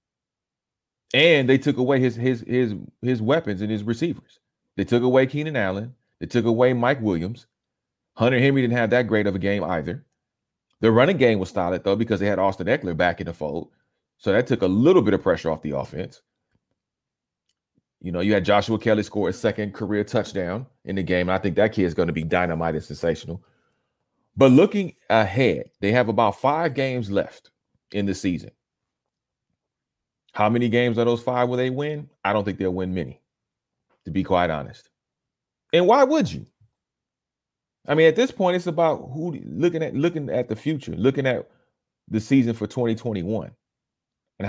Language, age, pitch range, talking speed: English, 30-49, 100-125 Hz, 190 wpm